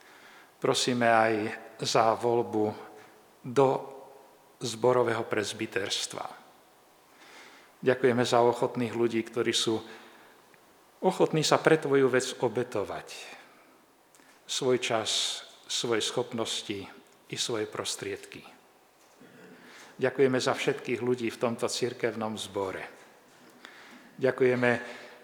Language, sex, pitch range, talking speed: Slovak, male, 115-135 Hz, 85 wpm